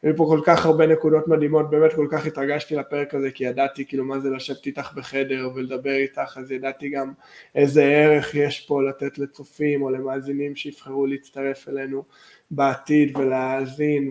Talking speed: 170 wpm